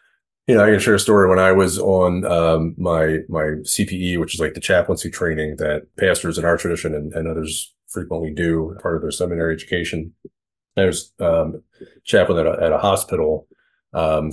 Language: English